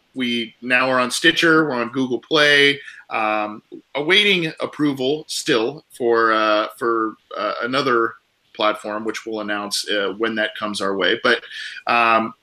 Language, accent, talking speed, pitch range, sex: English, American, 145 wpm, 115-165 Hz, male